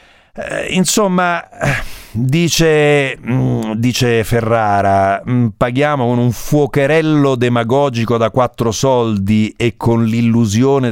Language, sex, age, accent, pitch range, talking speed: Italian, male, 50-69, native, 100-135 Hz, 80 wpm